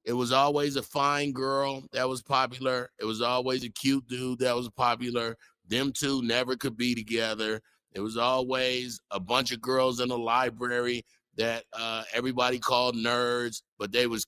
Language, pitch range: English, 120-140 Hz